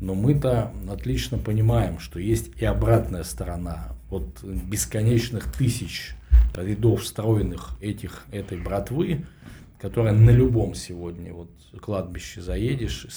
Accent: native